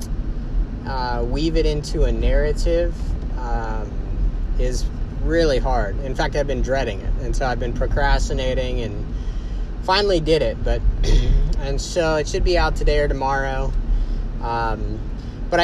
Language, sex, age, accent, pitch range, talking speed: English, male, 30-49, American, 110-145 Hz, 140 wpm